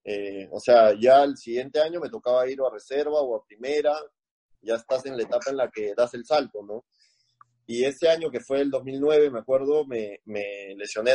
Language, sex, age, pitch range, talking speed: Spanish, male, 30-49, 110-150 Hz, 210 wpm